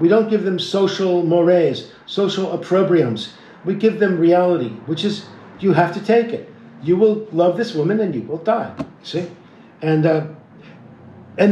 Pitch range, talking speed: 170-215 Hz, 165 wpm